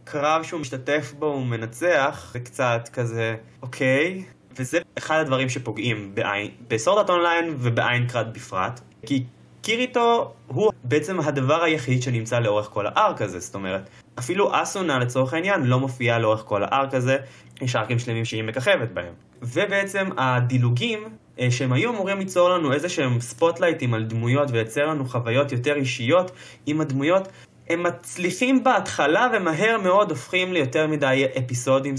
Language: Hebrew